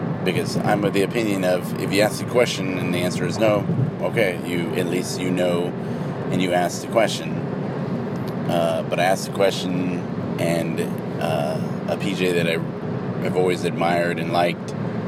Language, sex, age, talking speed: English, male, 30-49, 170 wpm